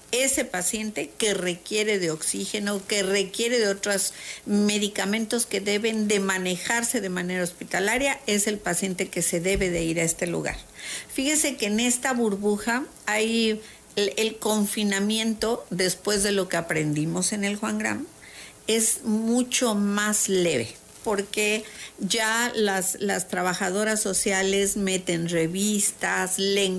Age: 50-69